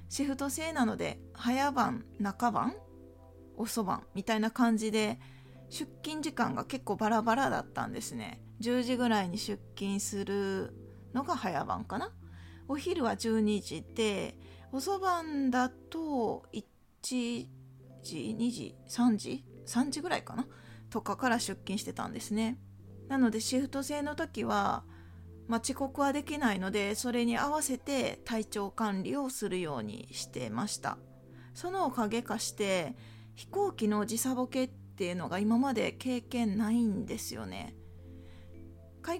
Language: Japanese